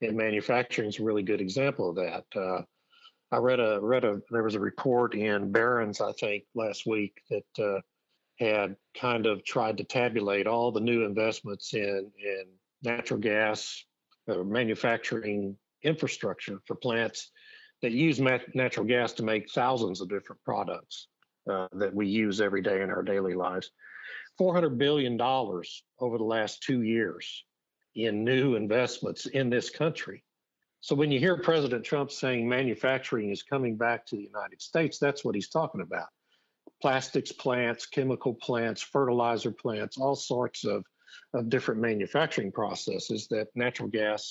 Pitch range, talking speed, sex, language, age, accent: 105-135 Hz, 160 wpm, male, English, 50-69, American